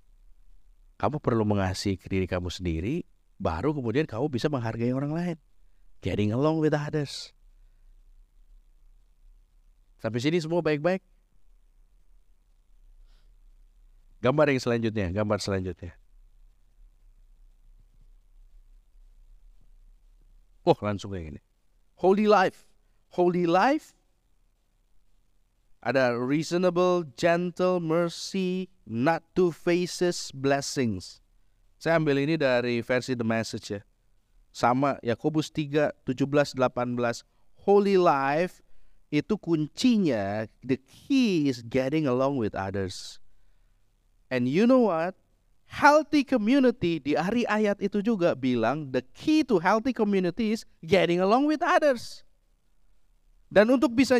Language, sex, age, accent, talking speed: Indonesian, male, 50-69, native, 95 wpm